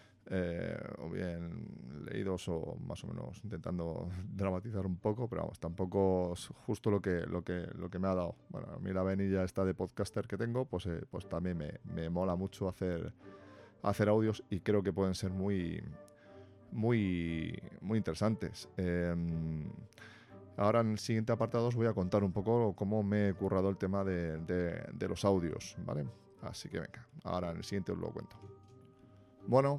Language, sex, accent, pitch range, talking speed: Spanish, male, Spanish, 90-115 Hz, 185 wpm